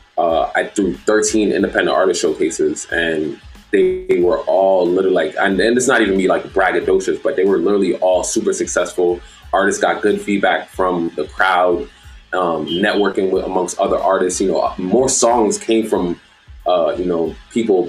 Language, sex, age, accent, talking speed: English, male, 20-39, American, 175 wpm